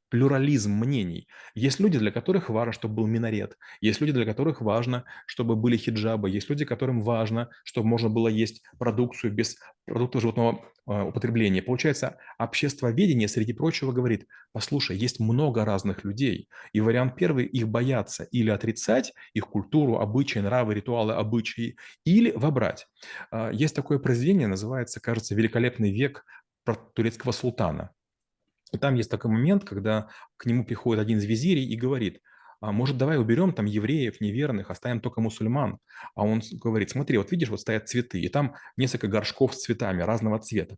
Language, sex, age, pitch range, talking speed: Russian, male, 30-49, 110-130 Hz, 160 wpm